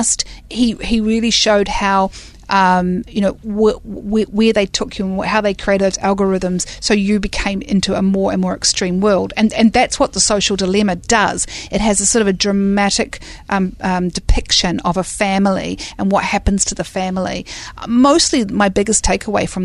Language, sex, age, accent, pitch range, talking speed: English, female, 40-59, Australian, 190-220 Hz, 190 wpm